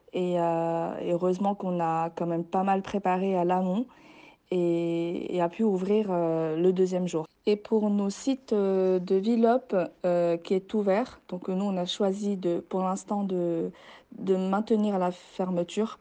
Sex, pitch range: female, 175-210 Hz